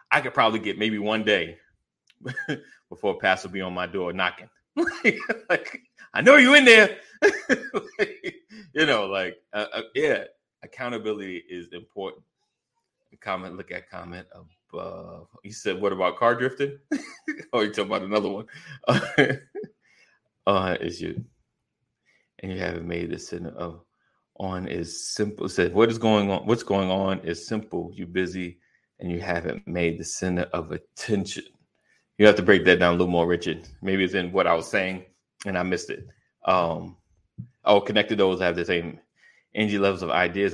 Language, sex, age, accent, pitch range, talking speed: English, male, 30-49, American, 90-115 Hz, 170 wpm